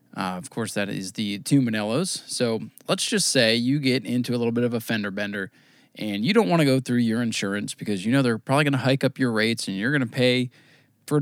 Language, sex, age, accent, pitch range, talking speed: English, male, 20-39, American, 110-140 Hz, 255 wpm